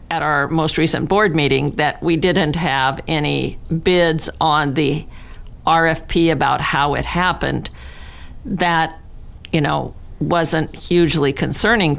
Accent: American